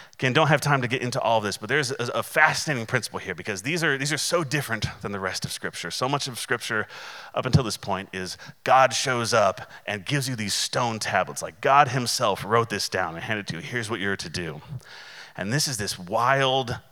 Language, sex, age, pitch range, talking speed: English, male, 30-49, 100-130 Hz, 240 wpm